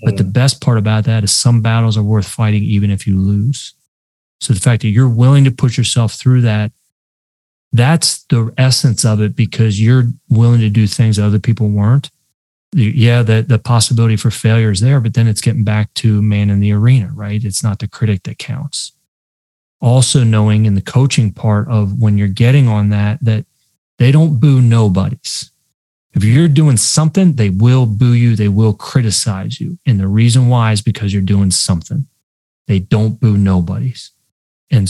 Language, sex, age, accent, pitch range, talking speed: English, male, 30-49, American, 105-130 Hz, 185 wpm